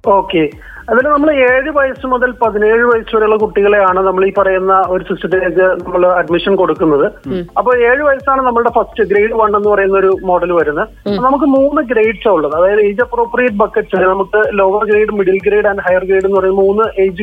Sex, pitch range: male, 200-240 Hz